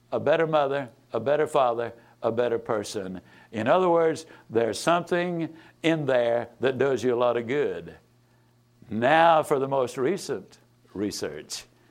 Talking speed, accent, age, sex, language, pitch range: 145 wpm, American, 60-79, male, English, 120-160 Hz